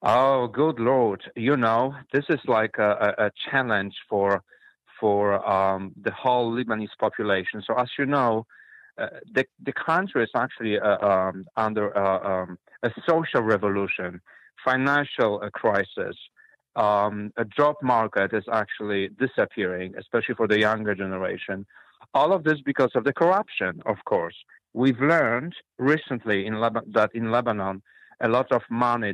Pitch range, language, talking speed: 105-125 Hz, English, 145 wpm